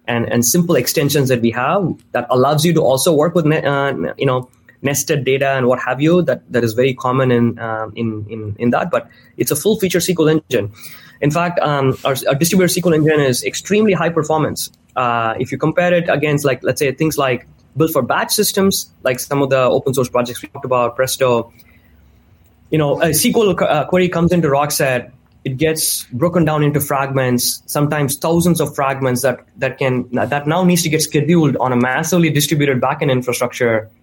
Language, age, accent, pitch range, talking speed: English, 20-39, Indian, 125-160 Hz, 200 wpm